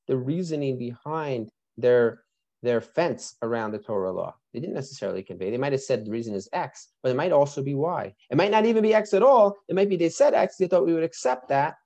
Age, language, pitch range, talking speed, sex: 30-49, English, 120-170 Hz, 240 wpm, male